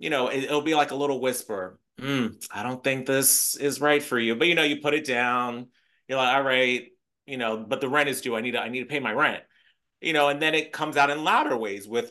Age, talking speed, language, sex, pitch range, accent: 30-49, 275 wpm, English, male, 125-150 Hz, American